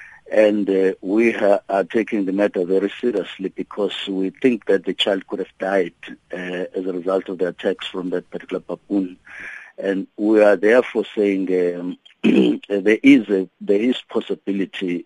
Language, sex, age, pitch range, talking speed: English, male, 50-69, 90-105 Hz, 165 wpm